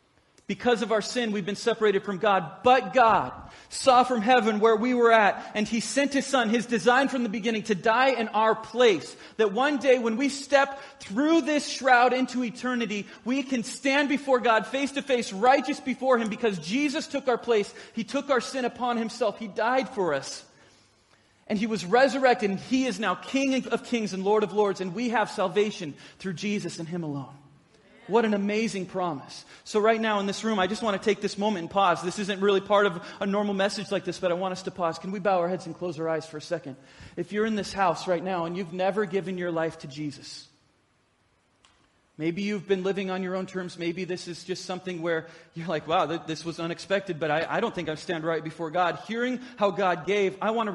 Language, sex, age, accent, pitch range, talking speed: English, male, 40-59, American, 180-235 Hz, 230 wpm